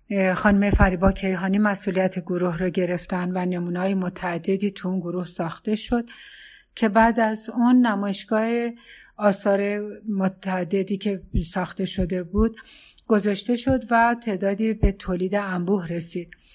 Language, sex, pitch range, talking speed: Persian, female, 185-230 Hz, 125 wpm